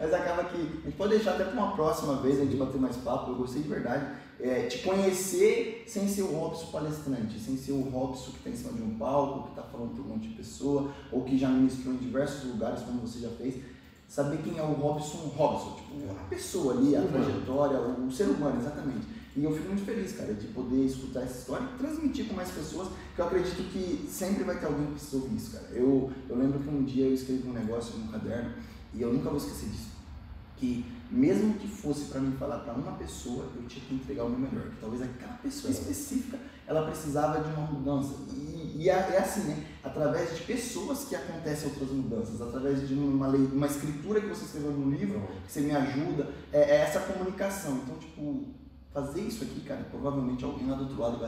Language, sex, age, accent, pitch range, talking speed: Portuguese, male, 10-29, Brazilian, 130-165 Hz, 230 wpm